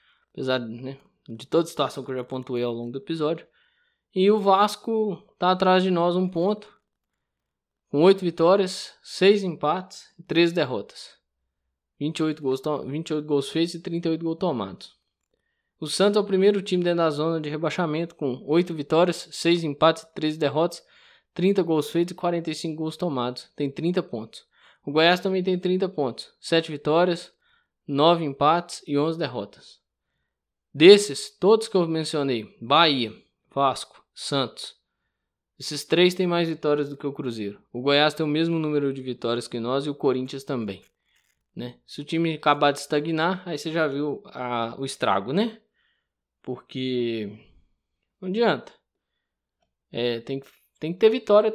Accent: Brazilian